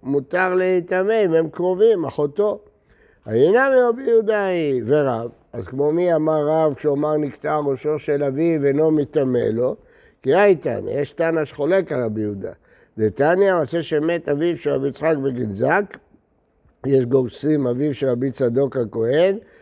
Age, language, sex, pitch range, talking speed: 60-79, Hebrew, male, 140-180 Hz, 145 wpm